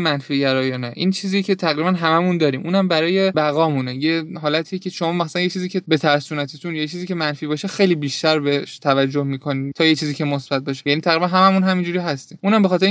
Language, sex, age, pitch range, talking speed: Persian, male, 20-39, 145-180 Hz, 205 wpm